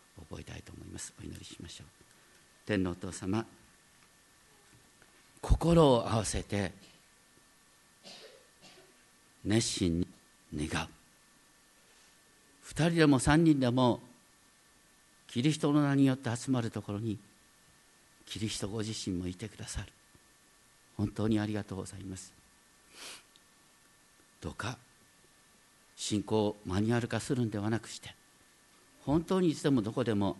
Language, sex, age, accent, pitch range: Japanese, male, 50-69, native, 105-130 Hz